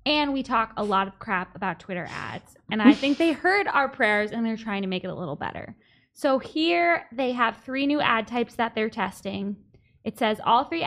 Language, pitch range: English, 205-260 Hz